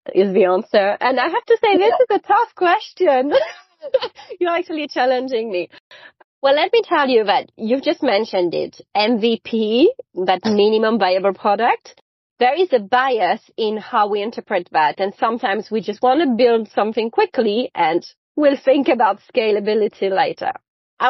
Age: 30-49